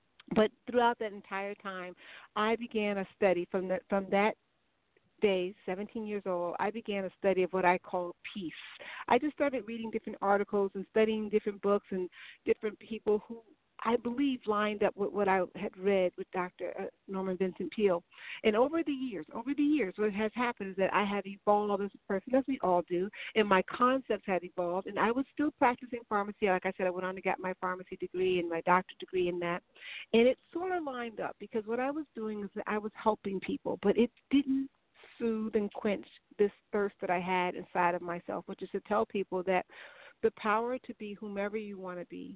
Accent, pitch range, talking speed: American, 185-220 Hz, 210 wpm